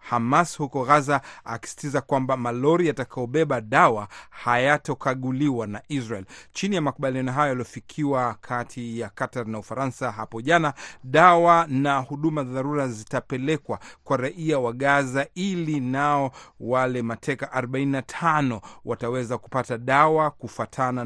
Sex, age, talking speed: male, 40-59, 115 wpm